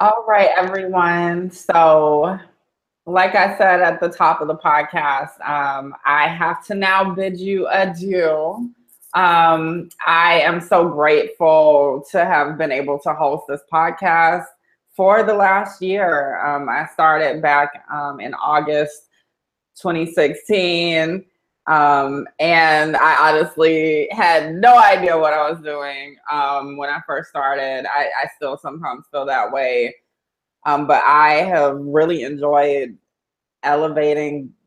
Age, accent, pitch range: 20-39, American, 145-175 Hz